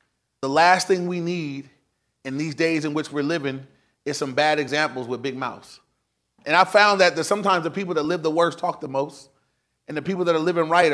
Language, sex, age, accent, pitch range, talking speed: English, male, 30-49, American, 140-175 Hz, 225 wpm